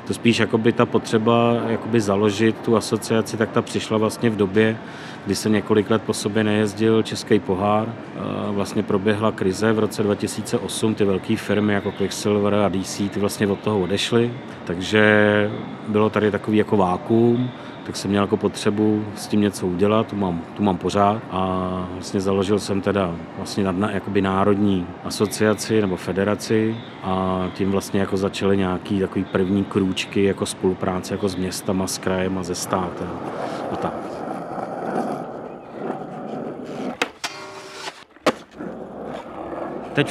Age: 40-59